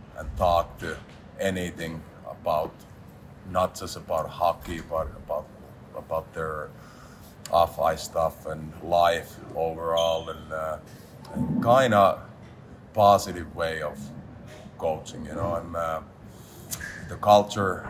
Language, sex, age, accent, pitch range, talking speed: English, male, 30-49, Finnish, 80-90 Hz, 110 wpm